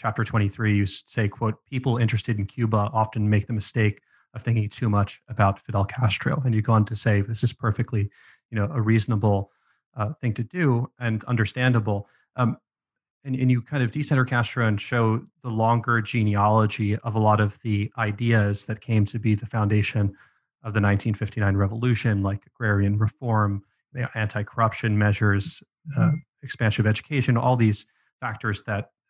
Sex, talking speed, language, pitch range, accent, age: male, 170 wpm, English, 105-125 Hz, American, 30-49